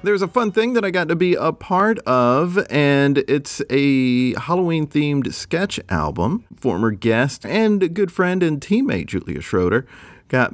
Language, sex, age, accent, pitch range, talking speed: English, male, 40-59, American, 110-155 Hz, 160 wpm